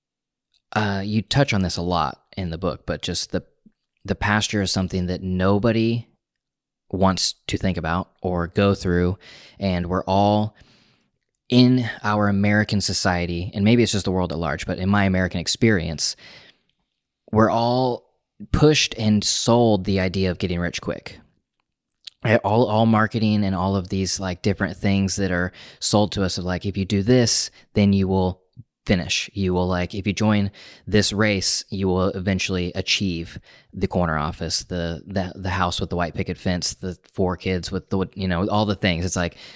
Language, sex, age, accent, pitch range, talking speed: English, male, 20-39, American, 90-105 Hz, 180 wpm